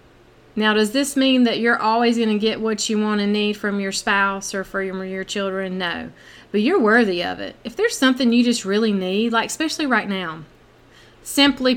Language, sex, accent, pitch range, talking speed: English, female, American, 190-235 Hz, 210 wpm